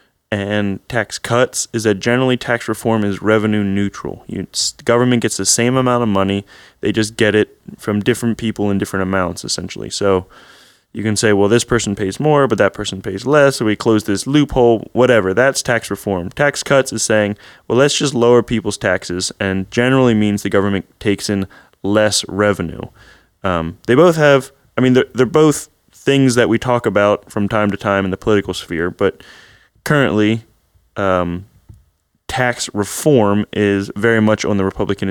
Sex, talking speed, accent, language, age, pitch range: male, 180 wpm, American, English, 20-39, 100-120 Hz